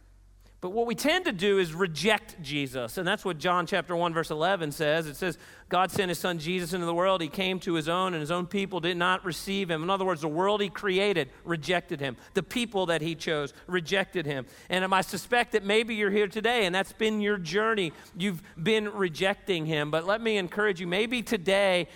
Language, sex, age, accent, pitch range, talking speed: English, male, 40-59, American, 155-205 Hz, 220 wpm